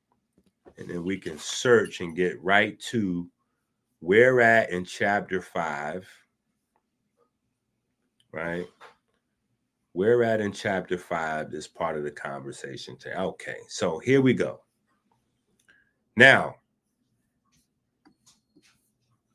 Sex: male